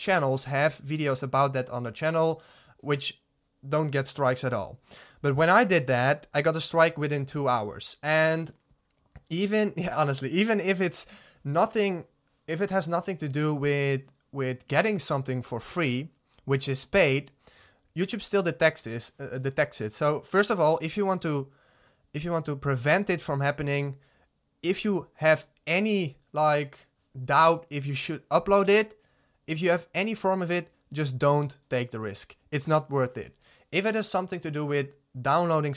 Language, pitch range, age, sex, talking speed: English, 135-165 Hz, 20-39, male, 180 wpm